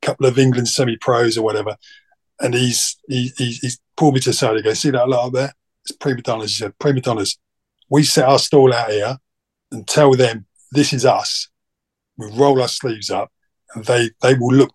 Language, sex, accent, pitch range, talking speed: English, male, British, 120-145 Hz, 220 wpm